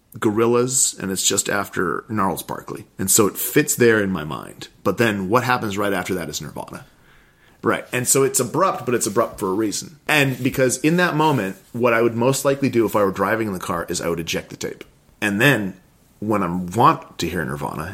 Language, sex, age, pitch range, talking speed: English, male, 30-49, 100-140 Hz, 225 wpm